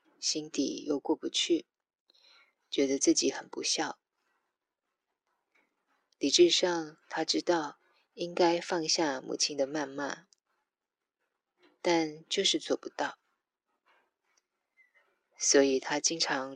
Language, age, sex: Chinese, 20-39, female